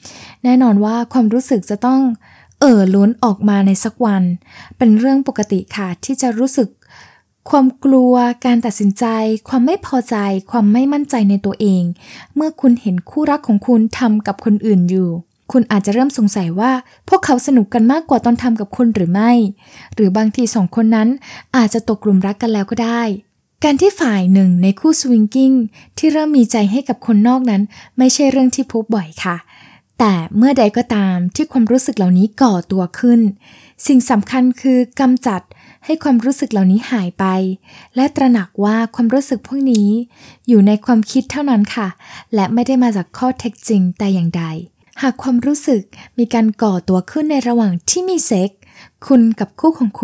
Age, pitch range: 20-39, 200-255 Hz